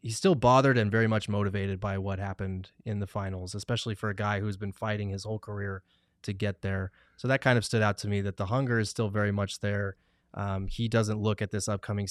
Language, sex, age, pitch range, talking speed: English, male, 20-39, 100-110 Hz, 250 wpm